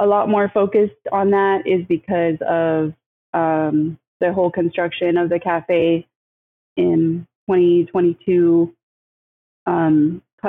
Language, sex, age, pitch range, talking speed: English, female, 20-39, 165-190 Hz, 105 wpm